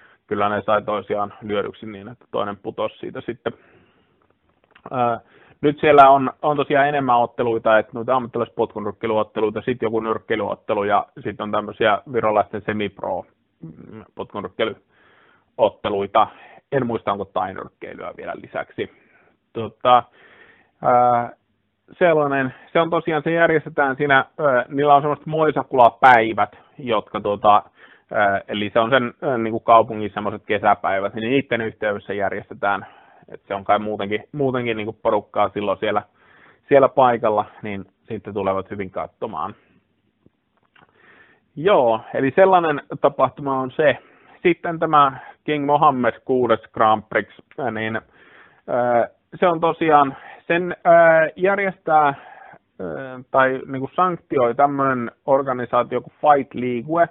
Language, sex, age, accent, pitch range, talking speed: English, male, 30-49, Finnish, 110-145 Hz, 110 wpm